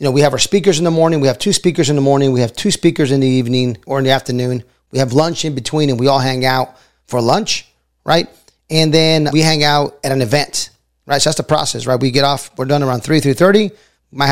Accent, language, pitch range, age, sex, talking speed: American, English, 130-160 Hz, 30-49, male, 270 wpm